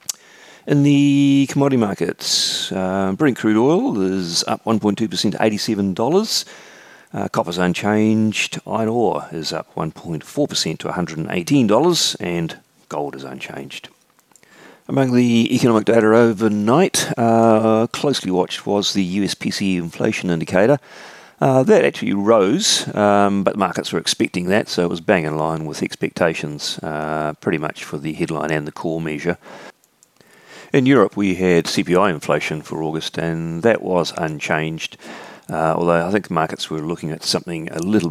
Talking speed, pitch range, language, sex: 145 wpm, 80-110 Hz, English, male